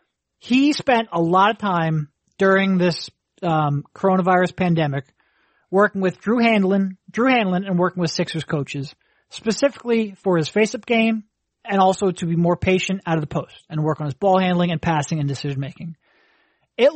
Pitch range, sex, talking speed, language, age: 165-210 Hz, male, 170 wpm, English, 30-49